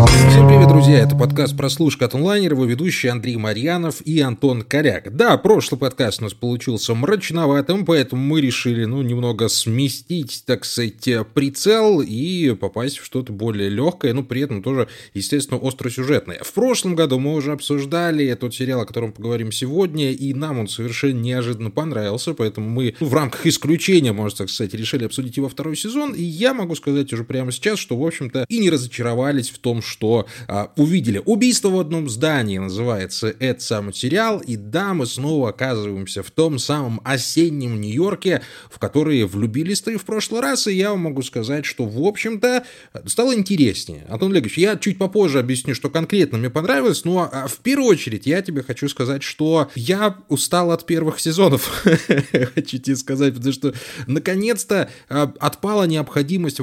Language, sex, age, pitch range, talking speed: Russian, male, 20-39, 120-165 Hz, 170 wpm